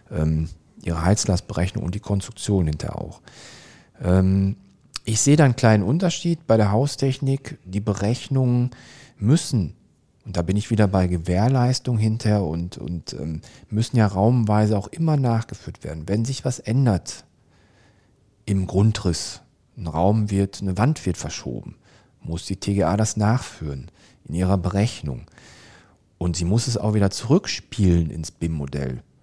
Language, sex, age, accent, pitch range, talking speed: German, male, 40-59, German, 90-120 Hz, 135 wpm